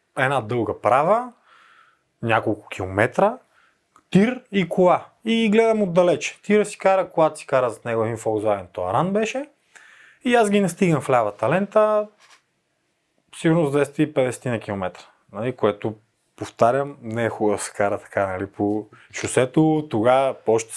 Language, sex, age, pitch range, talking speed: Bulgarian, male, 30-49, 115-175 Hz, 145 wpm